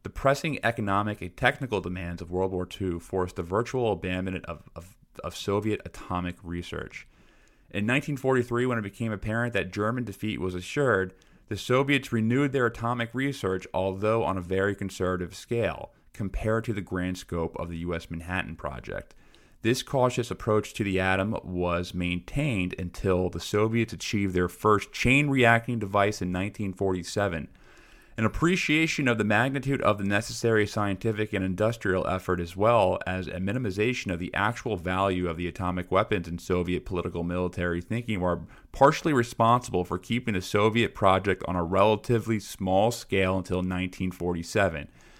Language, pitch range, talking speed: English, 90-115 Hz, 155 wpm